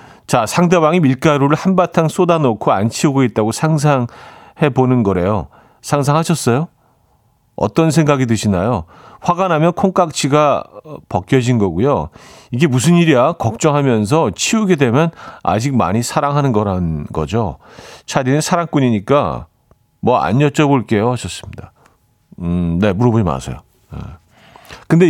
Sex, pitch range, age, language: male, 110-155 Hz, 40-59, Korean